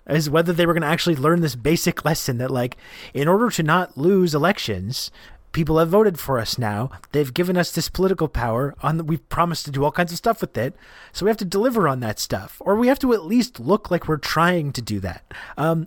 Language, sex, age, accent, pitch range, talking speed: English, male, 30-49, American, 135-170 Hz, 240 wpm